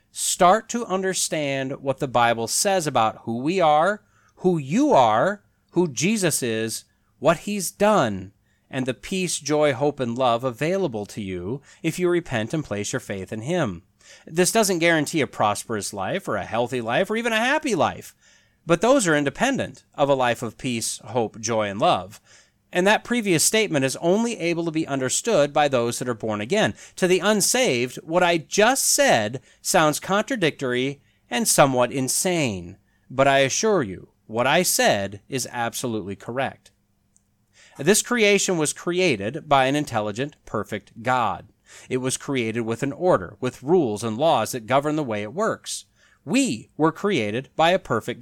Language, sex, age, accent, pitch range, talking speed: English, male, 30-49, American, 115-180 Hz, 170 wpm